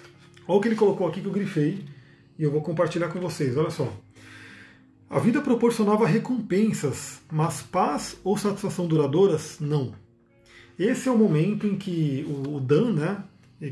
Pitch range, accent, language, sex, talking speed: 155-200 Hz, Brazilian, Portuguese, male, 160 wpm